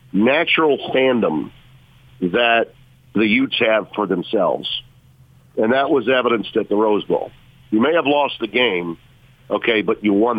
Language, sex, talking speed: English, male, 150 wpm